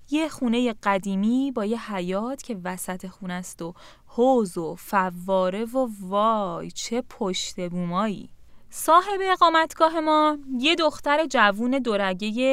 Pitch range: 195-280 Hz